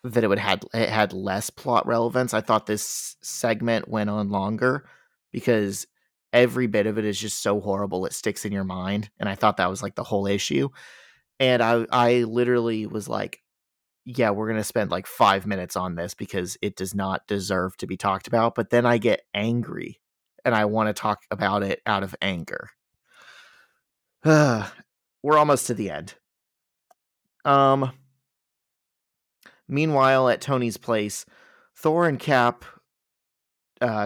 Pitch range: 105-125 Hz